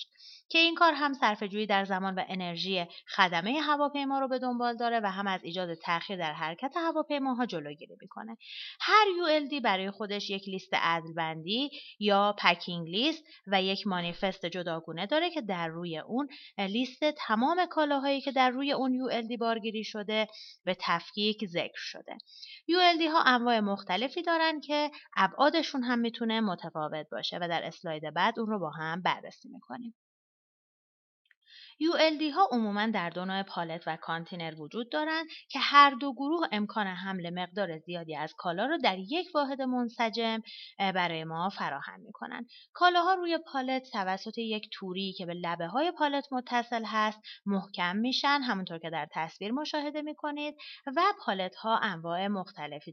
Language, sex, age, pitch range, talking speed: Persian, female, 30-49, 180-280 Hz, 160 wpm